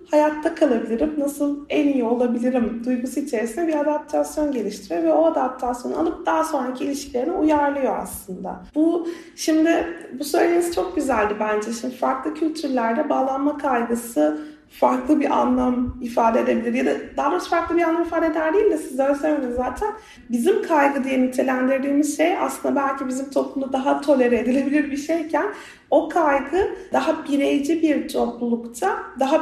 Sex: female